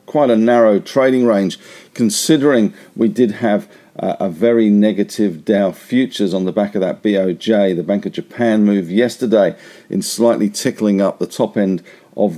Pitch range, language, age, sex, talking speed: 95-115 Hz, English, 50-69, male, 165 wpm